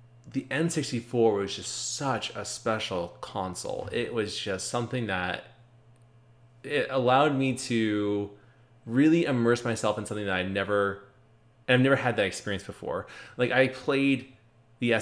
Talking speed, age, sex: 145 wpm, 20-39, male